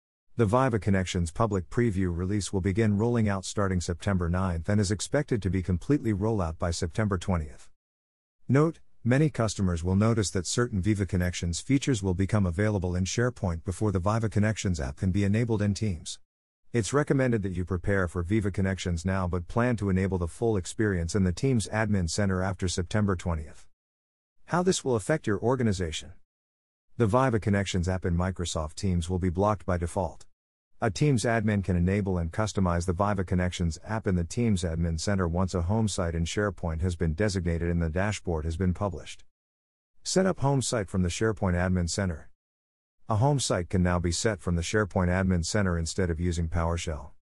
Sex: male